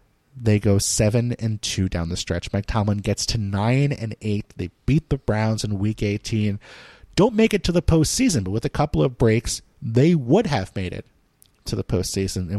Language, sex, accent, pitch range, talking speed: English, male, American, 105-140 Hz, 205 wpm